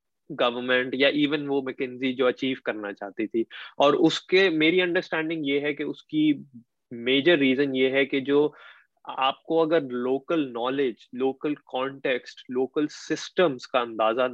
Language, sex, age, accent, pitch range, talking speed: Hindi, male, 20-39, native, 125-160 Hz, 140 wpm